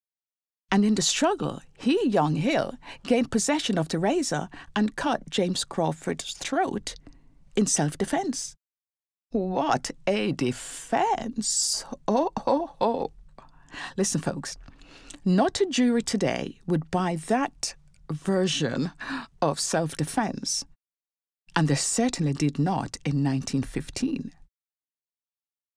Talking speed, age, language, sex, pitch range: 100 wpm, 60-79, English, female, 160-245 Hz